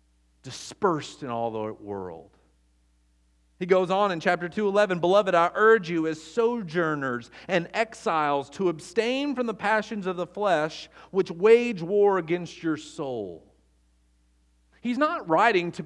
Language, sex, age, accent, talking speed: English, male, 40-59, American, 145 wpm